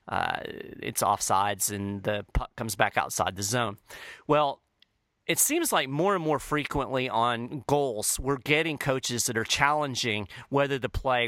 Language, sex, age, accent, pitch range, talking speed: English, male, 40-59, American, 115-150 Hz, 160 wpm